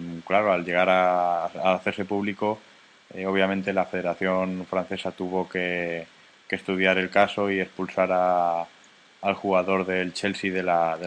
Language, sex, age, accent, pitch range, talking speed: Spanish, male, 20-39, Spanish, 90-105 Hz, 150 wpm